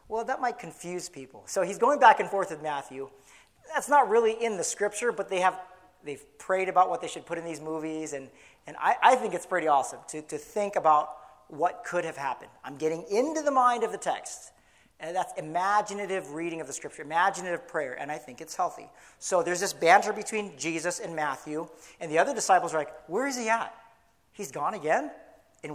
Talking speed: 215 wpm